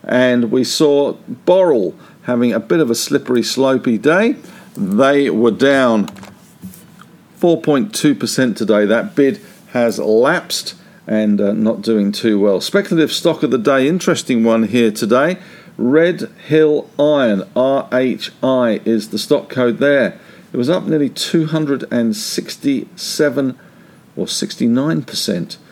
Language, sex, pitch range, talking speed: English, male, 125-160 Hz, 115 wpm